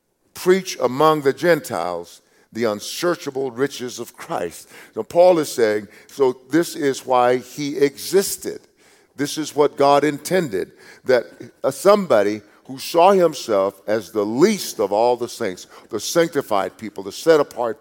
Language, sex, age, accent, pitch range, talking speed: English, male, 50-69, American, 120-165 Hz, 140 wpm